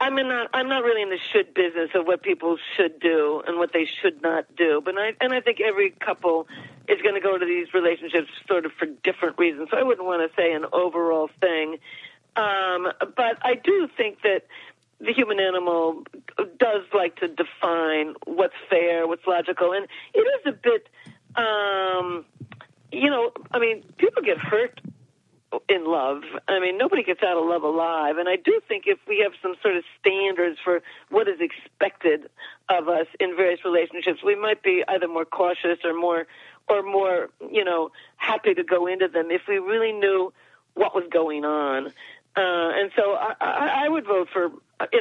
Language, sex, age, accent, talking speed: English, female, 50-69, American, 190 wpm